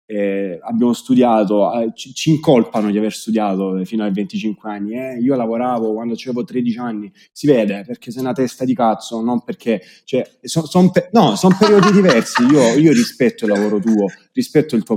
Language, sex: Italian, male